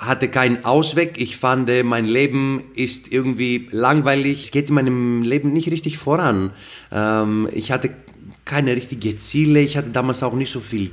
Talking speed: 170 wpm